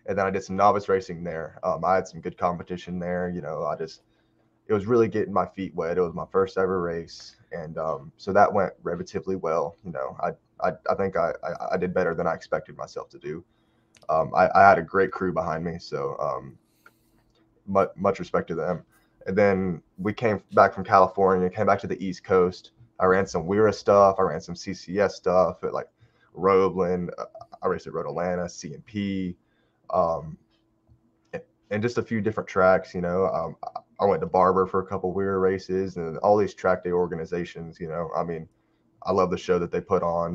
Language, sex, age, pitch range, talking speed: English, male, 20-39, 90-110 Hz, 210 wpm